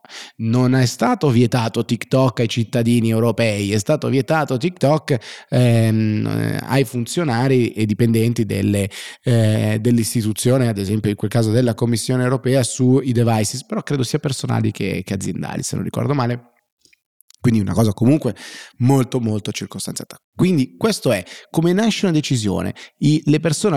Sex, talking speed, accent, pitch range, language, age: male, 140 wpm, native, 105-130 Hz, Italian, 30-49